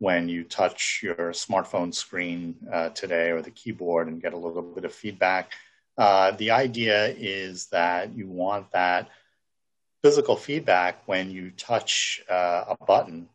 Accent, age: American, 50-69